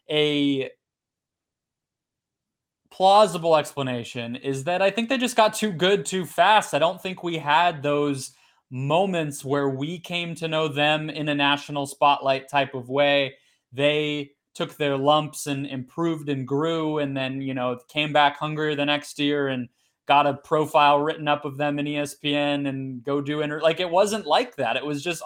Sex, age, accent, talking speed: male, 20-39, American, 175 wpm